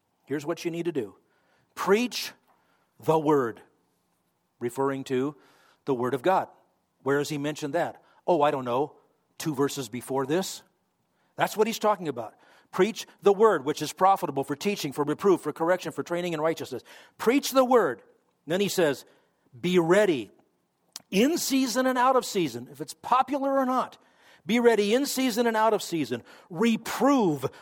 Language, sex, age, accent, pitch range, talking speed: English, male, 50-69, American, 160-225 Hz, 165 wpm